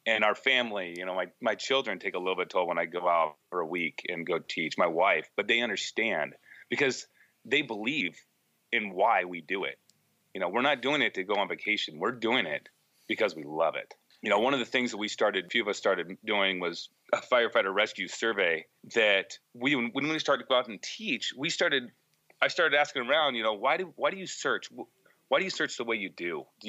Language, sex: English, male